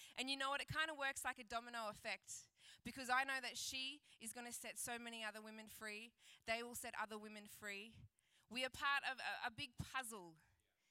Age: 20-39